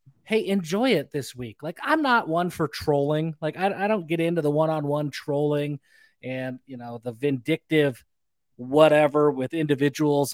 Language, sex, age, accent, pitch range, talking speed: English, male, 20-39, American, 145-205 Hz, 165 wpm